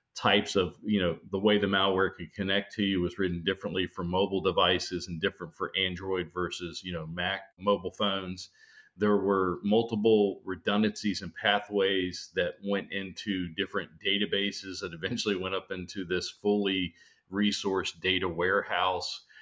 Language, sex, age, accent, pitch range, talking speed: English, male, 40-59, American, 90-105 Hz, 150 wpm